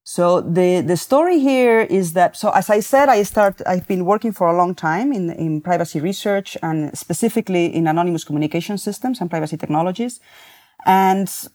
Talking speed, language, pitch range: 180 wpm, English, 160-205 Hz